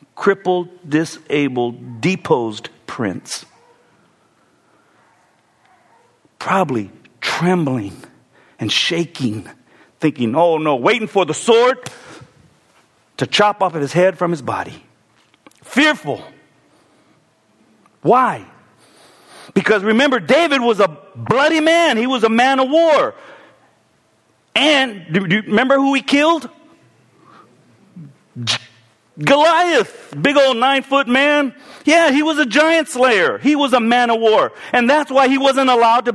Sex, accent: male, American